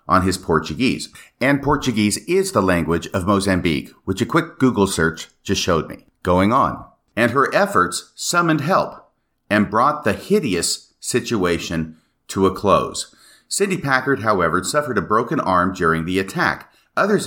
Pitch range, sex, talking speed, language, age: 90-145 Hz, male, 155 wpm, English, 50-69